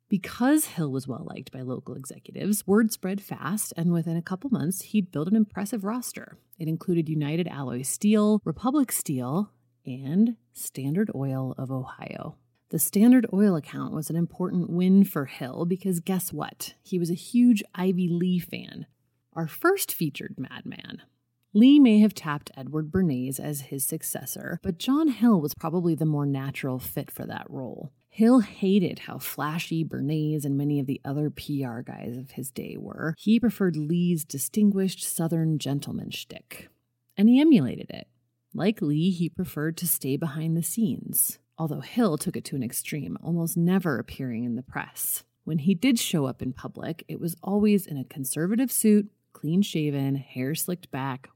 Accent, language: American, English